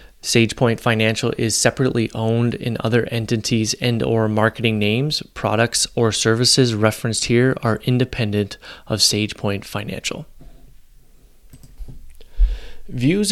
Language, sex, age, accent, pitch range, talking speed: English, male, 30-49, American, 110-125 Hz, 105 wpm